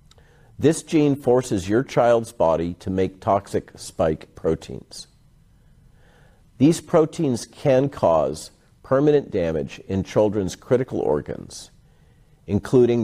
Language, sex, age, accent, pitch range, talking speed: English, male, 50-69, American, 95-135 Hz, 100 wpm